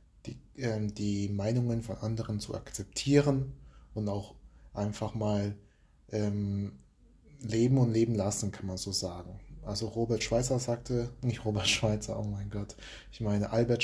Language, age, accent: German, 30-49, German